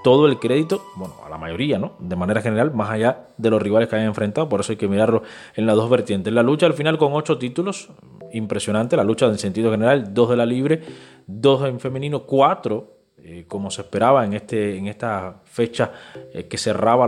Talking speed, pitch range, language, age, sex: 215 wpm, 105-135 Hz, Spanish, 20-39, male